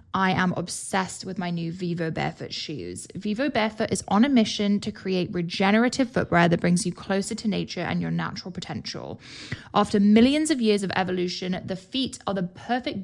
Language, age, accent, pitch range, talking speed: English, 10-29, British, 175-215 Hz, 185 wpm